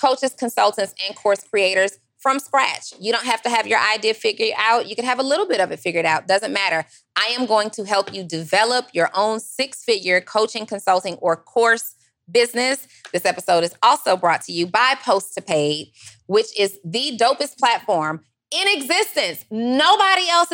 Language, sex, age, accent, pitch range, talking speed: English, female, 20-39, American, 175-240 Hz, 185 wpm